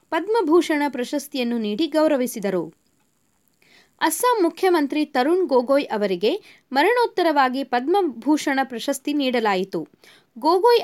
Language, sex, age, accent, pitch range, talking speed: Kannada, female, 20-39, native, 245-340 Hz, 75 wpm